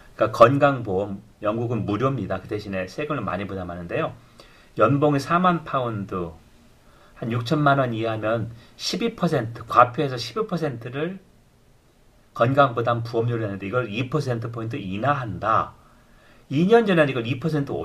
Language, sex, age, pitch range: Korean, male, 40-59, 110-150 Hz